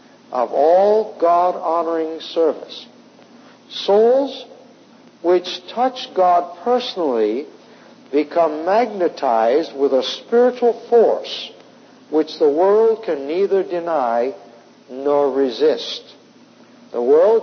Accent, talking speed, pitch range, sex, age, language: American, 85 wpm, 175-285 Hz, male, 60-79, English